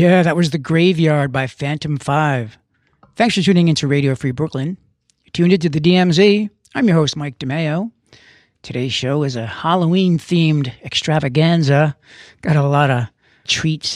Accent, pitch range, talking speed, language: American, 135-175 Hz, 155 wpm, English